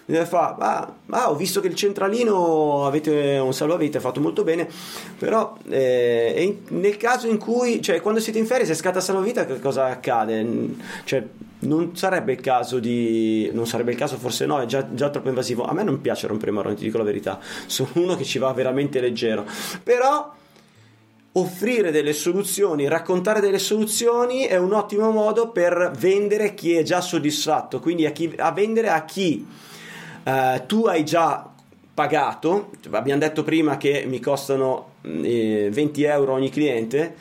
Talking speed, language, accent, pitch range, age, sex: 175 wpm, Italian, native, 130-195 Hz, 30-49, male